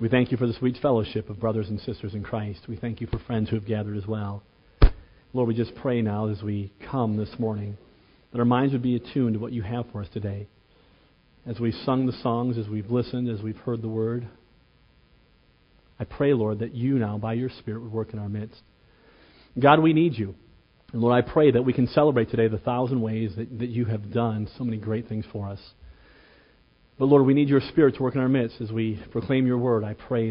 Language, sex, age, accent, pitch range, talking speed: English, male, 40-59, American, 110-130 Hz, 235 wpm